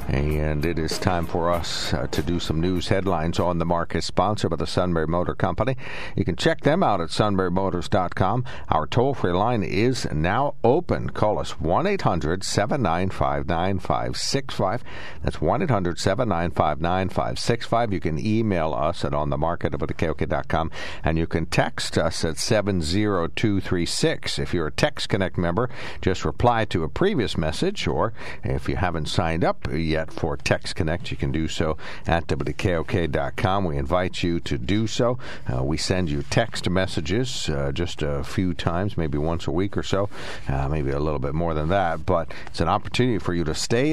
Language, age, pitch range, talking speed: English, 60-79, 80-105 Hz, 165 wpm